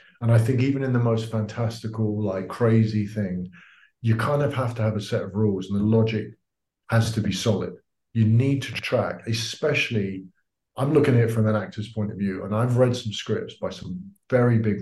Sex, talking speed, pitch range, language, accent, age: male, 210 wpm, 105-120 Hz, English, British, 50-69